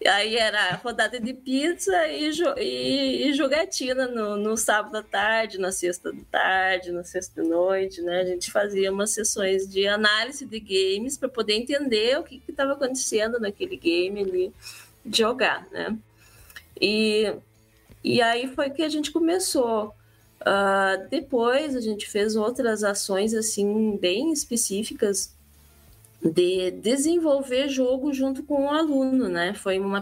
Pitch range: 190-265 Hz